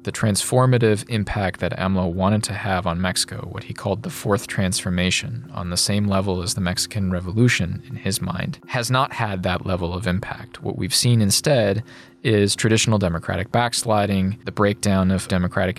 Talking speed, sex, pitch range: 175 wpm, male, 95-120 Hz